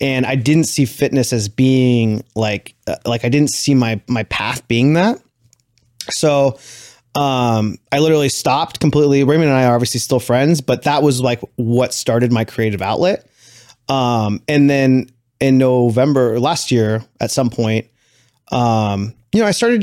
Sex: male